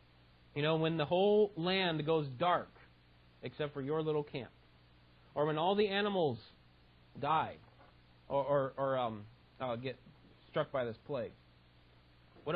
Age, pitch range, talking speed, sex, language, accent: 30-49, 100-165 Hz, 145 wpm, male, Italian, American